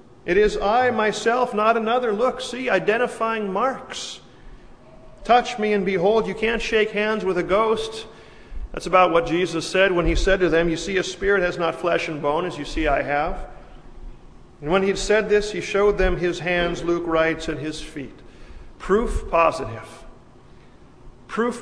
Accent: American